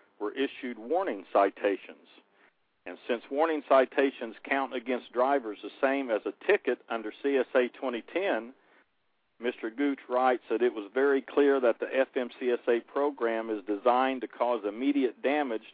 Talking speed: 140 wpm